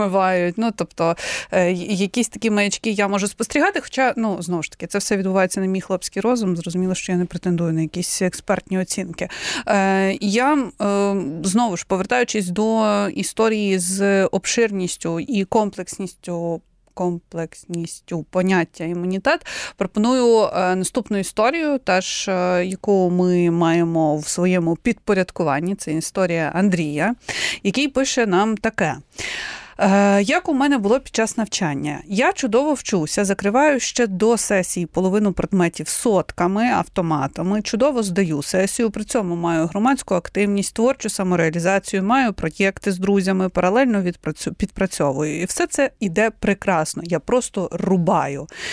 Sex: female